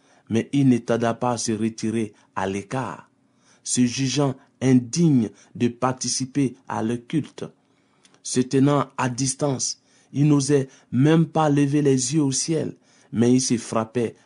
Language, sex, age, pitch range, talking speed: French, male, 50-69, 115-140 Hz, 145 wpm